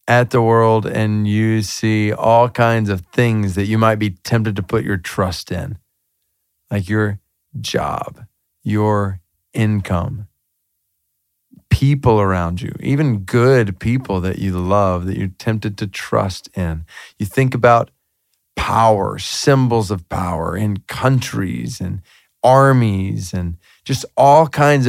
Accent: American